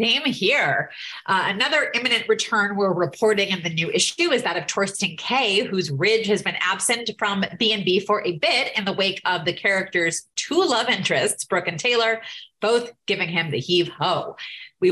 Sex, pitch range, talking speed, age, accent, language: female, 170-220 Hz, 185 wpm, 30-49, American, English